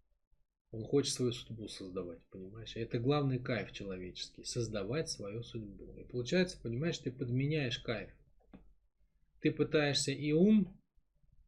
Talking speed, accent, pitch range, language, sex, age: 120 wpm, native, 110-135 Hz, Russian, male, 20-39